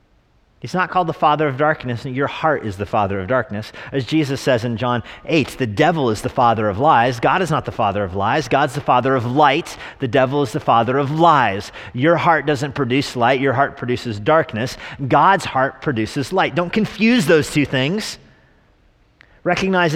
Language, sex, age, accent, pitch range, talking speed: English, male, 40-59, American, 115-155 Hz, 195 wpm